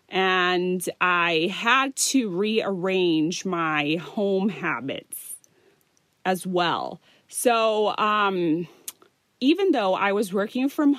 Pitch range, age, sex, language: 175-230 Hz, 30-49, female, Thai